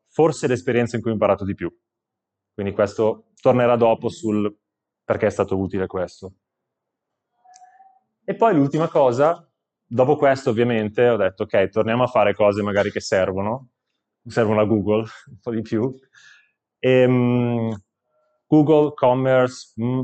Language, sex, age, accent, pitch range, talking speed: Italian, male, 20-39, native, 100-120 Hz, 130 wpm